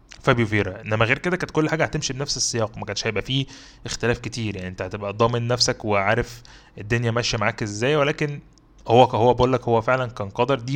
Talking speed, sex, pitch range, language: 195 wpm, male, 115-145 Hz, Arabic